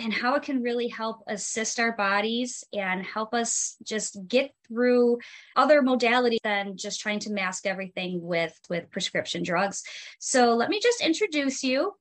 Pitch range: 200-255 Hz